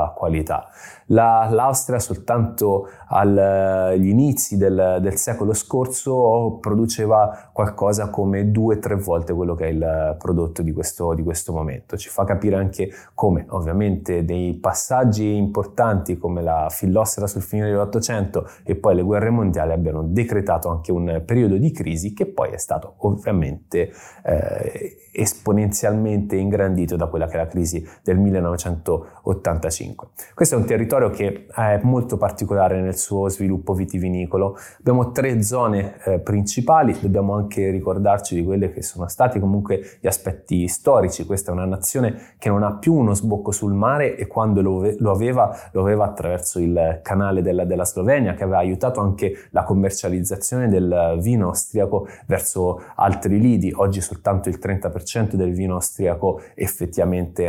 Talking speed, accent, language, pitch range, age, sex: 150 wpm, native, Italian, 90-105 Hz, 20-39, male